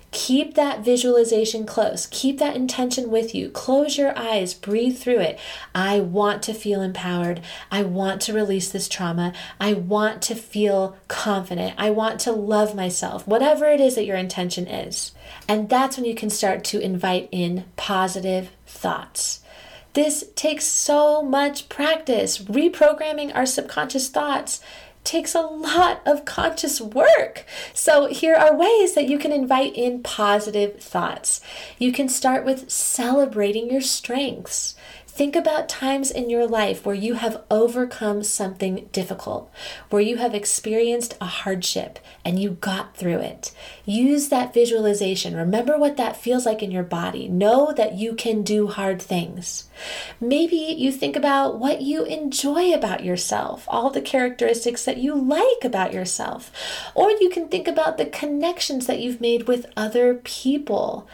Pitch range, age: 205-275 Hz, 30-49